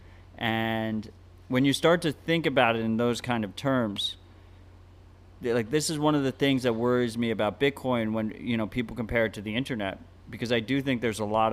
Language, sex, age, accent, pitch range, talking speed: English, male, 30-49, American, 100-125 Hz, 215 wpm